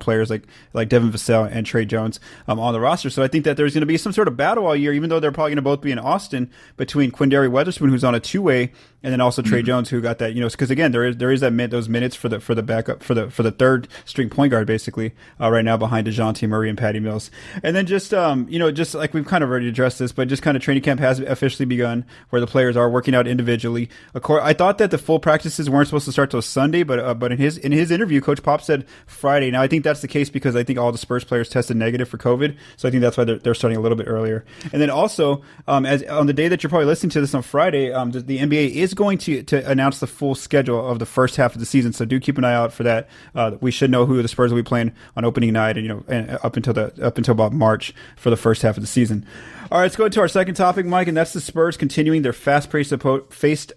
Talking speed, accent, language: 295 wpm, American, English